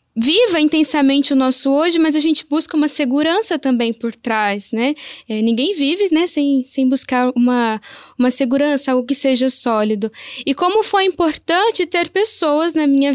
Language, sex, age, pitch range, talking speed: Portuguese, female, 10-29, 245-300 Hz, 170 wpm